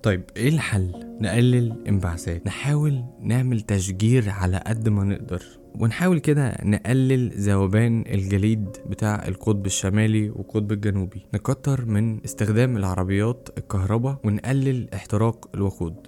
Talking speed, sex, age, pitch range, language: 110 wpm, male, 20-39, 100-120 Hz, Arabic